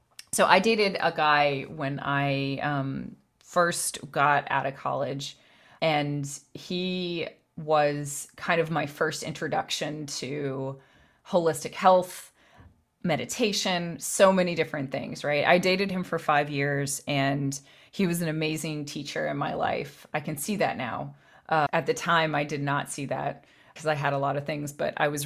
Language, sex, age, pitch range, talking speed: English, female, 30-49, 140-160 Hz, 165 wpm